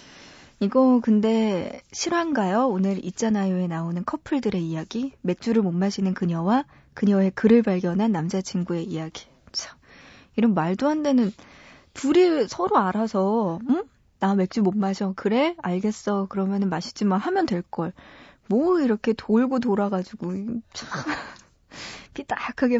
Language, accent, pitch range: Korean, native, 190-240 Hz